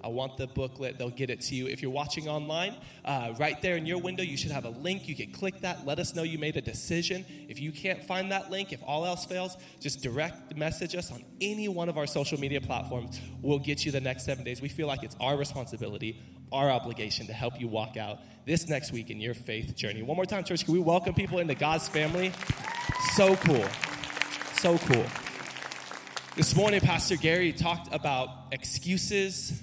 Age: 20-39